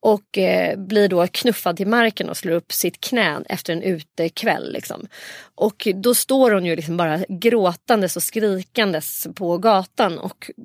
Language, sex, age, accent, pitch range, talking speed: Swedish, female, 30-49, native, 175-225 Hz, 165 wpm